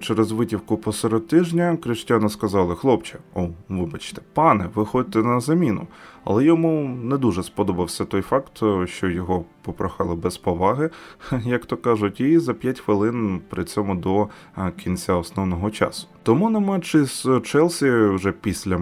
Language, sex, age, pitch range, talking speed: Ukrainian, male, 20-39, 95-130 Hz, 145 wpm